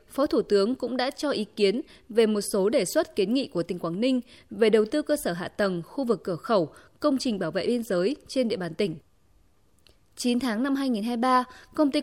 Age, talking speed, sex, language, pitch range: 20-39, 230 wpm, female, Vietnamese, 200-260 Hz